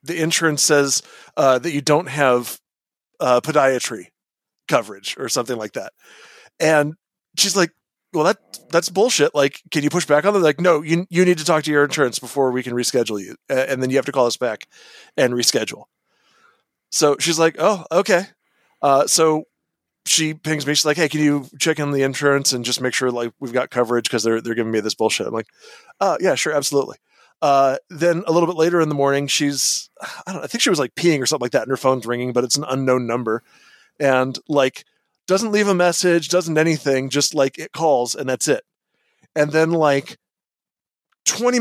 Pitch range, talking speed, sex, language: 130-165 Hz, 210 wpm, male, English